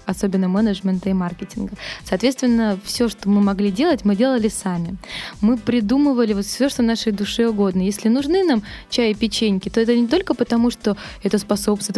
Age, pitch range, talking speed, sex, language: 20-39, 195-230 Hz, 175 wpm, female, Russian